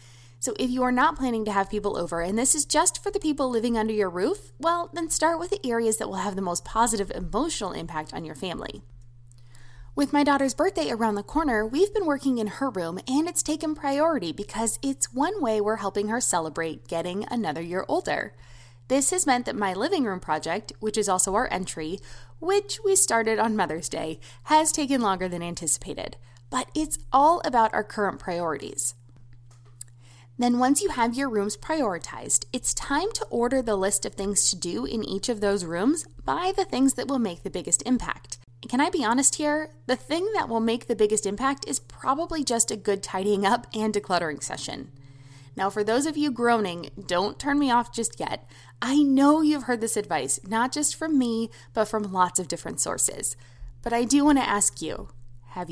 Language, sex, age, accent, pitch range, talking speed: English, female, 20-39, American, 170-275 Hz, 200 wpm